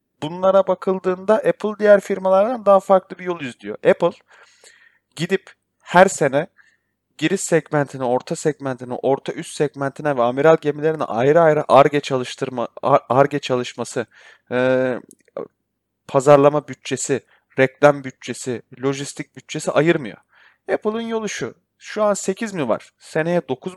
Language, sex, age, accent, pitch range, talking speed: Turkish, male, 30-49, native, 135-195 Hz, 115 wpm